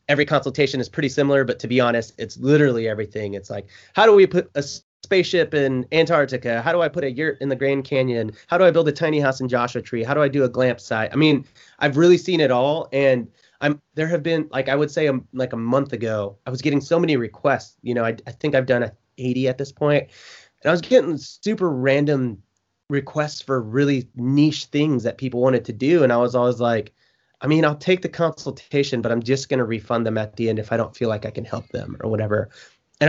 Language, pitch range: English, 120-150 Hz